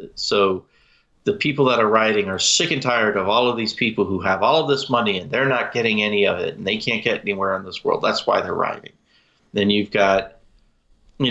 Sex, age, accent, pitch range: male, 30-49, American, 100-120 Hz